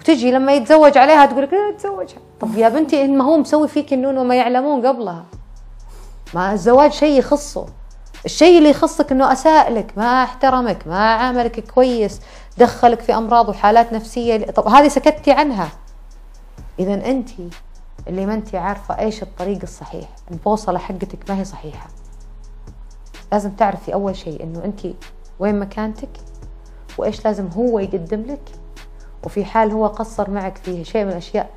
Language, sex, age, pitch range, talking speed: Arabic, female, 30-49, 185-255 Hz, 150 wpm